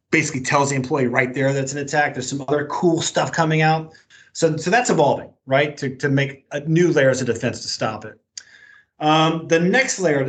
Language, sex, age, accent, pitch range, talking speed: English, male, 30-49, American, 125-160 Hz, 210 wpm